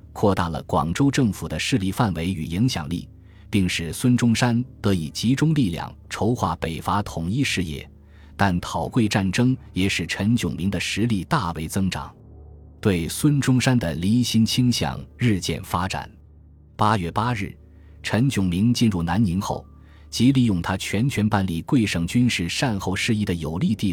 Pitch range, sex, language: 85-115 Hz, male, Chinese